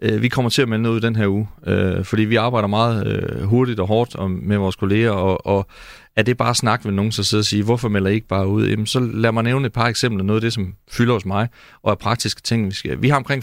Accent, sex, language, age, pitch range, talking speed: native, male, Danish, 40-59, 95-120 Hz, 290 wpm